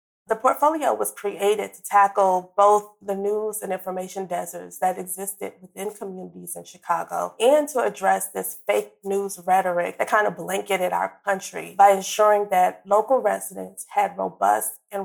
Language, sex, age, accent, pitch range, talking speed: English, female, 30-49, American, 185-205 Hz, 155 wpm